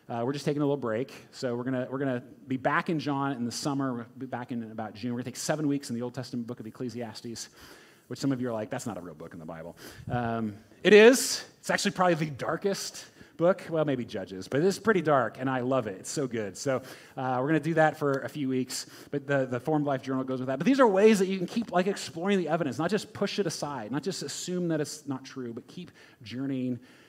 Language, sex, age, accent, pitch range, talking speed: English, male, 30-49, American, 120-155 Hz, 275 wpm